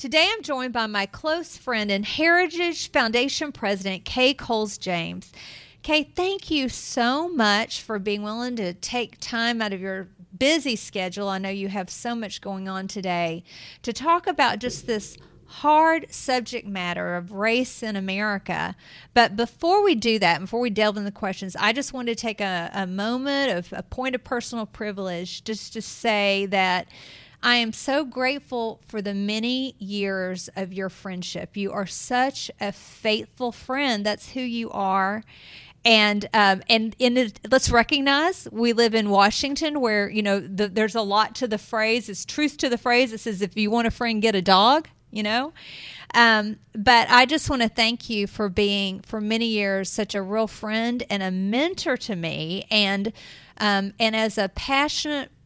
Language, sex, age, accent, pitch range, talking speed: English, female, 40-59, American, 200-250 Hz, 180 wpm